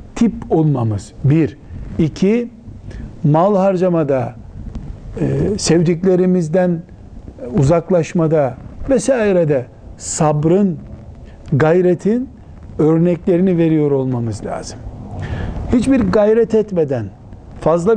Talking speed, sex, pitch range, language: 65 wpm, male, 130-180 Hz, Turkish